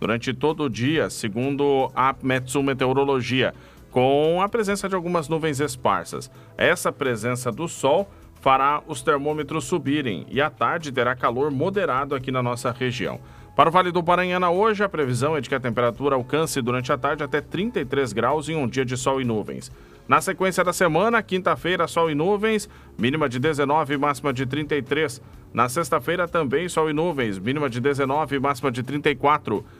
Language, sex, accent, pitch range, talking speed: Portuguese, male, Brazilian, 130-165 Hz, 175 wpm